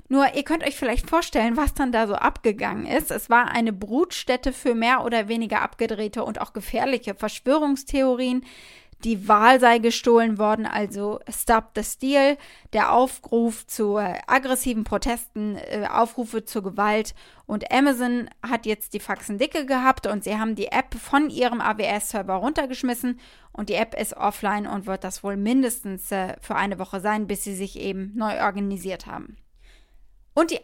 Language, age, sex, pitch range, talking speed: German, 20-39, female, 215-265 Hz, 165 wpm